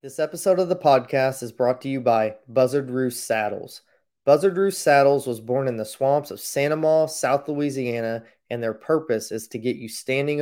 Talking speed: 195 wpm